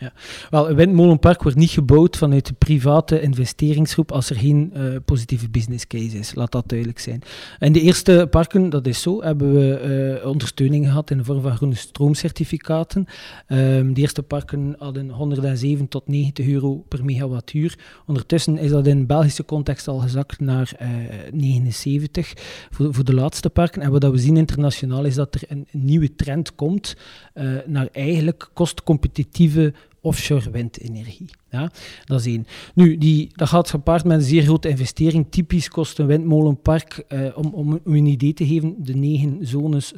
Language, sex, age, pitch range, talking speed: Dutch, male, 40-59, 135-155 Hz, 170 wpm